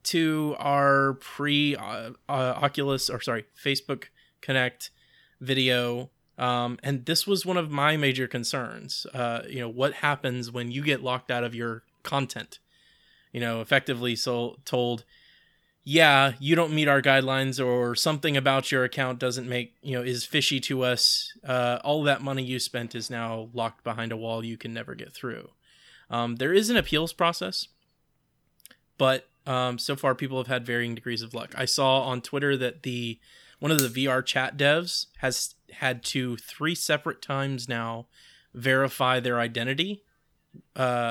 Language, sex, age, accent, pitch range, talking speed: English, male, 20-39, American, 120-145 Hz, 160 wpm